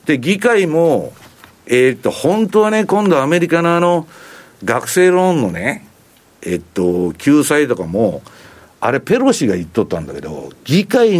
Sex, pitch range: male, 125-195 Hz